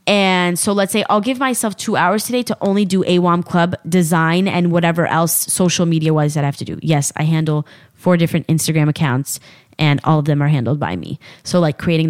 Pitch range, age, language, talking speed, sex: 150-175 Hz, 20-39, English, 220 wpm, female